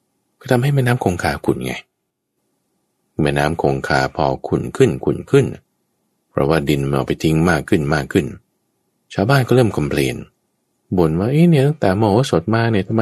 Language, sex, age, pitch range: Thai, male, 20-39, 70-105 Hz